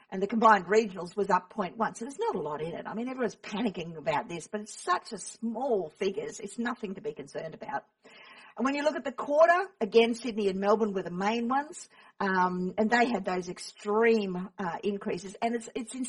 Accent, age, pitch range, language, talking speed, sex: Australian, 50-69, 195-230 Hz, English, 220 wpm, female